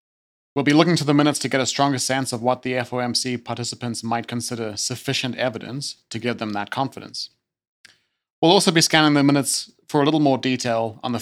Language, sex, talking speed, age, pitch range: English, male, 205 wpm, 30-49, 110-135 Hz